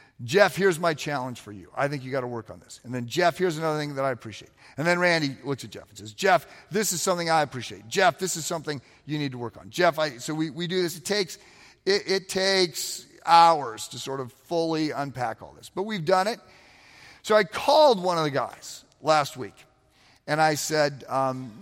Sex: male